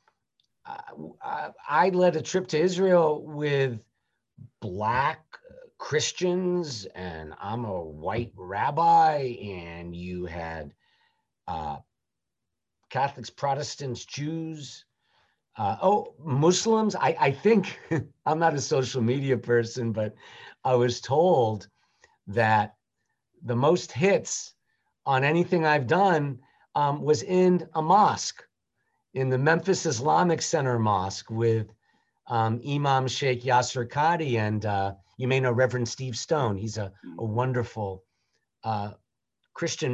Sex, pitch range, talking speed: male, 110-155 Hz, 115 wpm